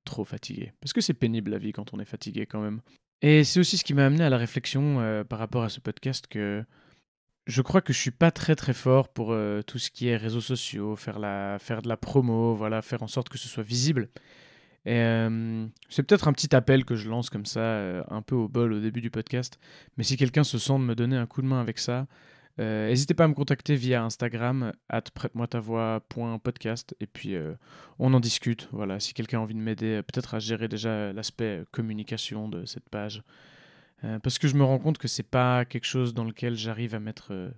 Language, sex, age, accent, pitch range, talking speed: French, male, 20-39, French, 110-130 Hz, 230 wpm